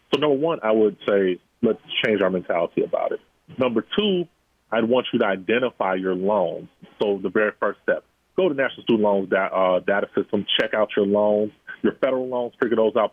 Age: 30-49